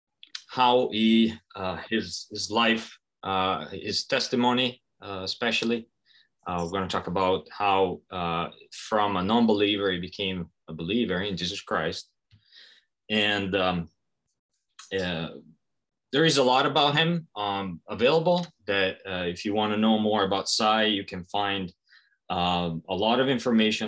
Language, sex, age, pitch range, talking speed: Italian, male, 20-39, 90-115 Hz, 145 wpm